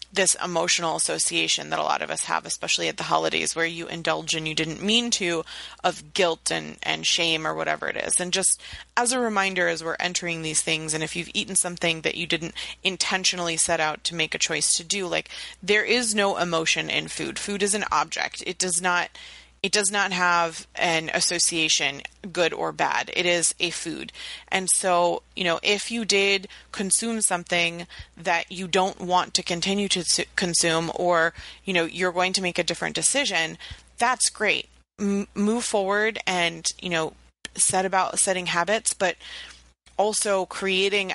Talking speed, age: 180 wpm, 30-49